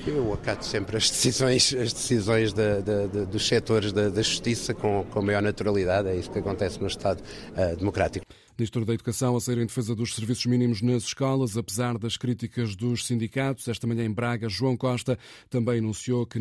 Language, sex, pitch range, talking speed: Portuguese, male, 110-130 Hz, 195 wpm